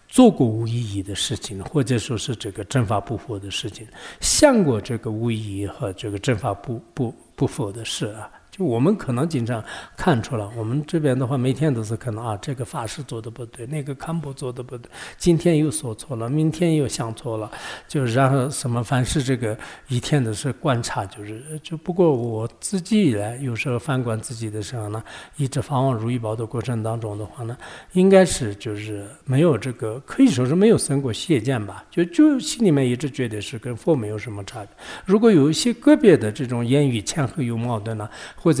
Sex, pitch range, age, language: male, 110-140 Hz, 60-79, English